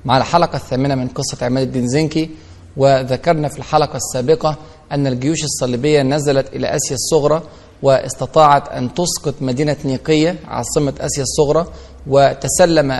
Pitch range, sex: 130-160 Hz, male